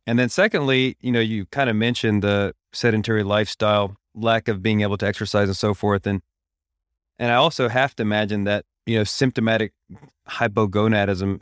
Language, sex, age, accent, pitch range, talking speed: English, male, 30-49, American, 95-105 Hz, 175 wpm